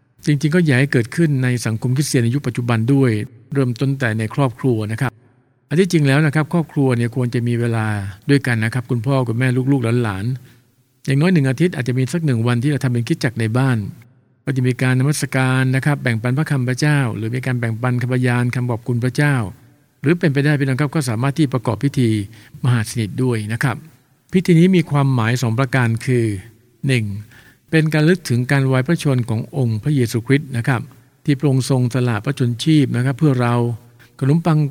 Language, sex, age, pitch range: English, male, 60-79, 120-140 Hz